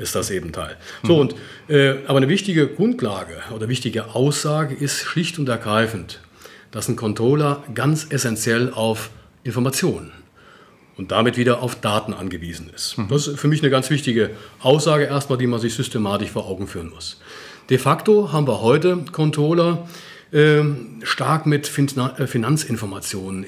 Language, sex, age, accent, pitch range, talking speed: German, male, 40-59, German, 110-145 Hz, 150 wpm